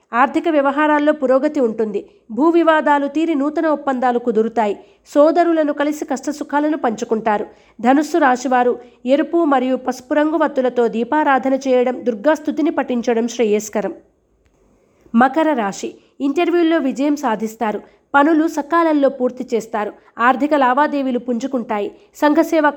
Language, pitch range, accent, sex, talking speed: Telugu, 245-300 Hz, native, female, 100 wpm